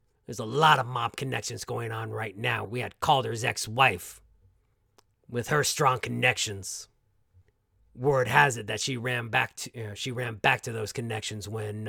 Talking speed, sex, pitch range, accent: 175 wpm, male, 105-130 Hz, American